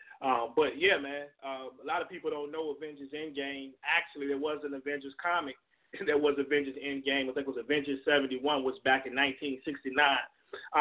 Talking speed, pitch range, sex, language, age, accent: 185 wpm, 130-155 Hz, male, English, 30-49, American